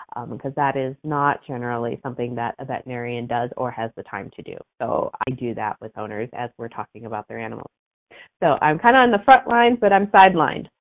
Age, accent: 30-49, American